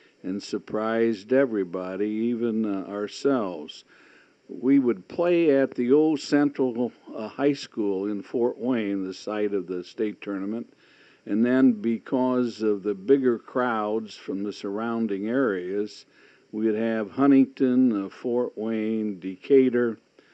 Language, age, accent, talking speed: English, 60-79, American, 130 wpm